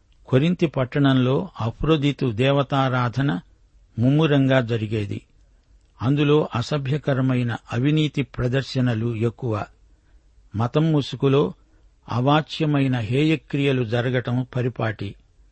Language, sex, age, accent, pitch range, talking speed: Telugu, male, 60-79, native, 115-140 Hz, 65 wpm